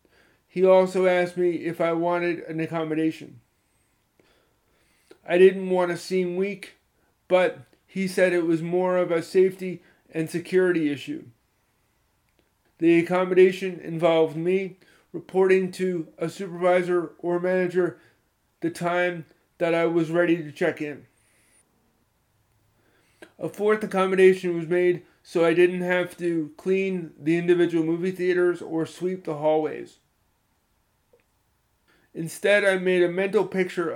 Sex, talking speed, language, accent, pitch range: male, 125 wpm, English, American, 160-185 Hz